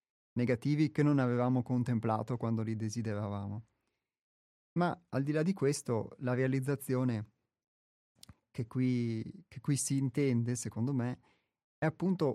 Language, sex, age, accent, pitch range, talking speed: Italian, male, 30-49, native, 115-145 Hz, 120 wpm